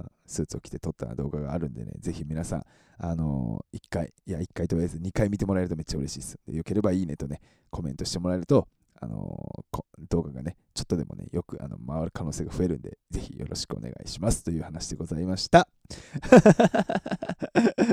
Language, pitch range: Japanese, 80-120 Hz